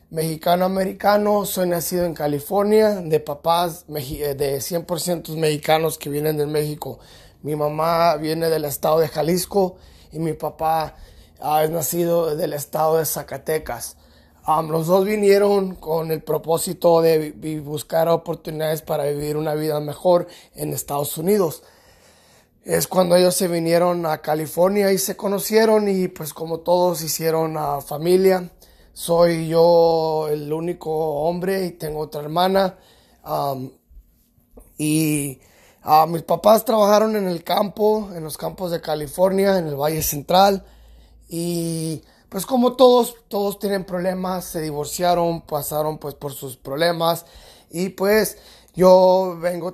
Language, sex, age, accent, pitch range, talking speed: Spanish, male, 30-49, Mexican, 150-180 Hz, 130 wpm